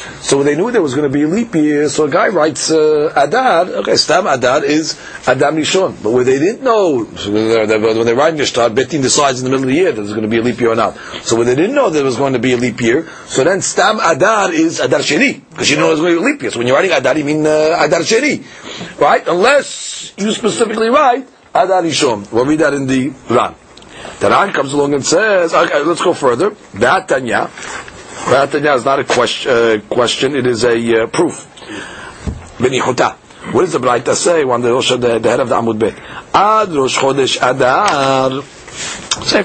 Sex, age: male, 40-59